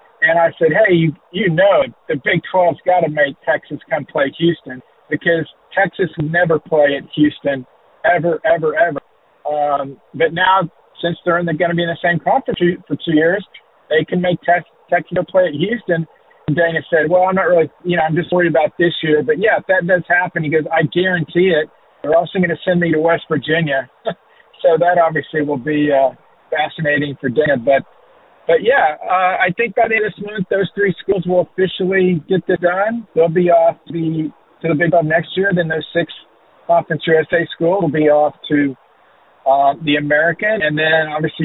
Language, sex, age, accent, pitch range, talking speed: English, male, 50-69, American, 150-180 Hz, 210 wpm